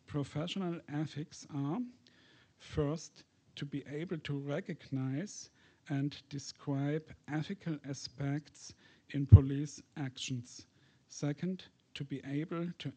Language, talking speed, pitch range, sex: English, 95 wpm, 140-155 Hz, male